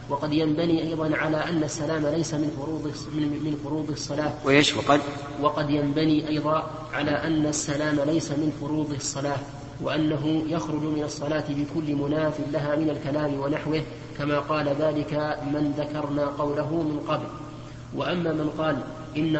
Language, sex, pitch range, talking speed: Arabic, male, 145-155 Hz, 135 wpm